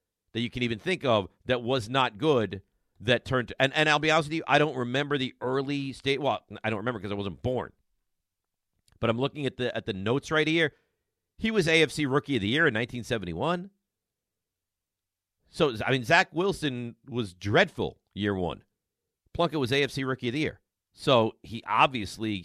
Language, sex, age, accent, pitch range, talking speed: English, male, 50-69, American, 110-150 Hz, 190 wpm